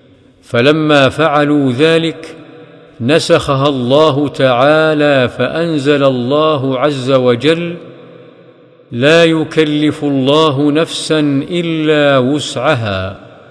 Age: 50-69